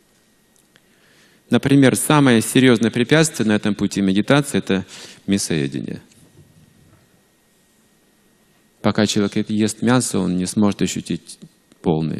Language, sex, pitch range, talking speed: Russian, male, 85-115 Hz, 95 wpm